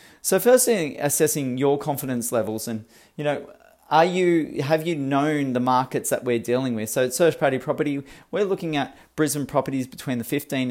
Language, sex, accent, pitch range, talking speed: English, male, Australian, 120-145 Hz, 195 wpm